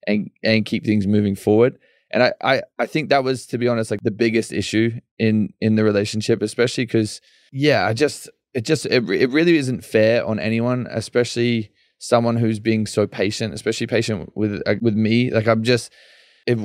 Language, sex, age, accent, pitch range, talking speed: English, male, 20-39, Australian, 105-120 Hz, 195 wpm